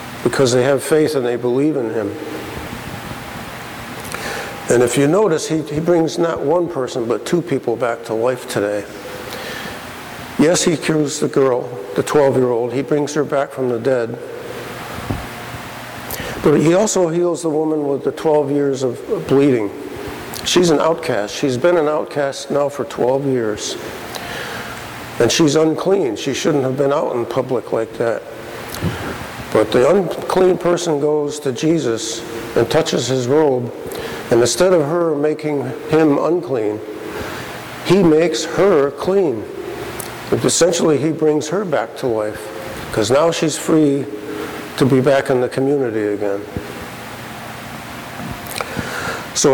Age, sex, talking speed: 60-79, male, 140 wpm